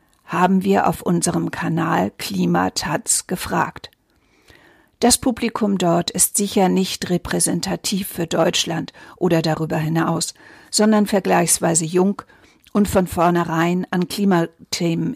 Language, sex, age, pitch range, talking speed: German, female, 50-69, 170-205 Hz, 105 wpm